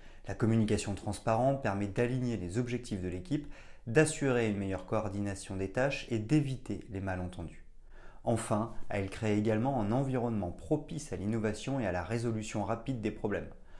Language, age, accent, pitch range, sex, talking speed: French, 30-49, French, 95-120 Hz, male, 150 wpm